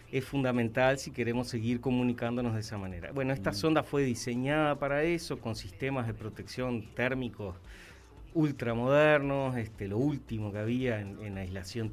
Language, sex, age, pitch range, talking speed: Spanish, male, 30-49, 110-140 Hz, 145 wpm